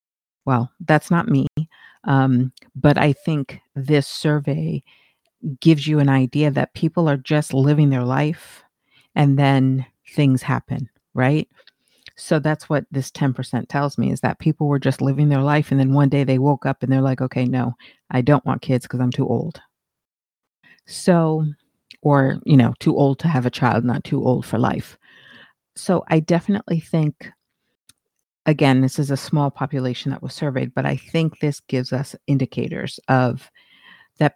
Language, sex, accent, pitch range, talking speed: English, female, American, 135-160 Hz, 170 wpm